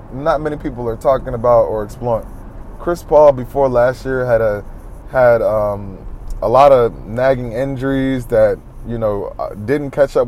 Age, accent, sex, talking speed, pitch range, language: 20-39, American, male, 165 wpm, 115-135 Hz, English